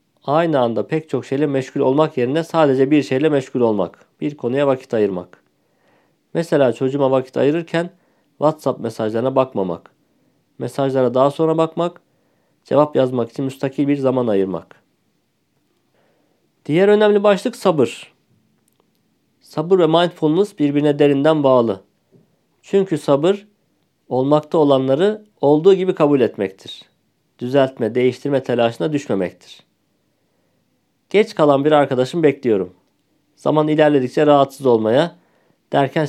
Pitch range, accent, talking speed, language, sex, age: 125-155 Hz, native, 110 wpm, Turkish, male, 50-69